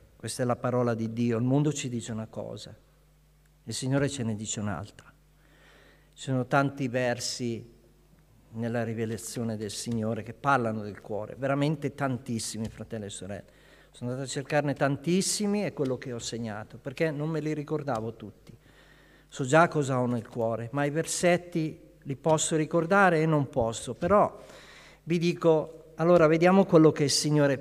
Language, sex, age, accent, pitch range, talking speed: Italian, male, 50-69, native, 120-170 Hz, 165 wpm